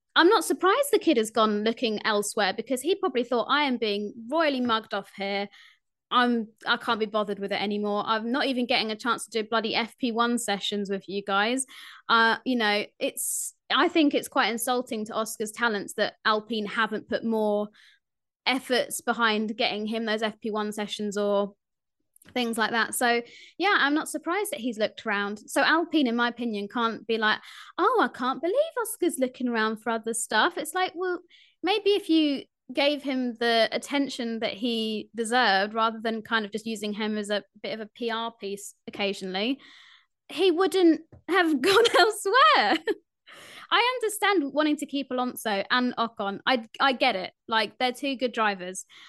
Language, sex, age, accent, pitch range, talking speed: English, female, 20-39, British, 215-280 Hz, 180 wpm